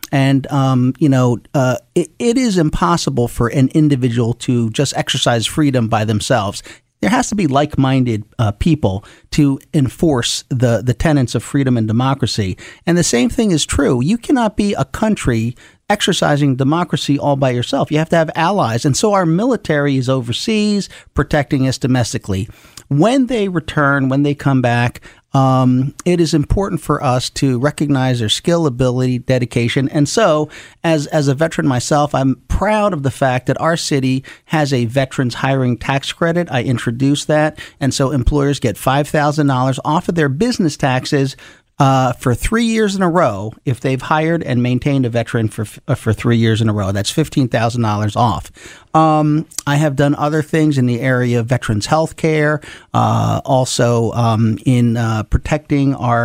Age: 40-59